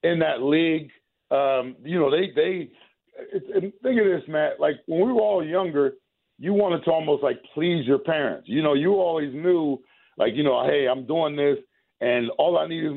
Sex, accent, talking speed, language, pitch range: male, American, 200 wpm, English, 140-170 Hz